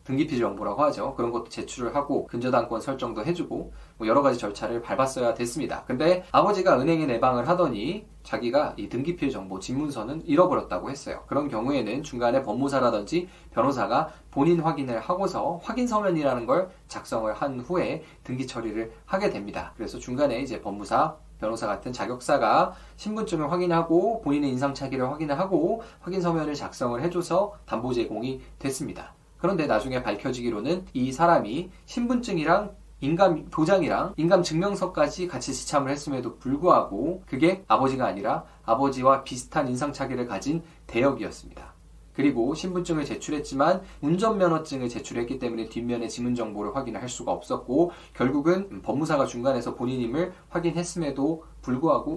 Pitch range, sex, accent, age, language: 125-175 Hz, male, native, 20-39, Korean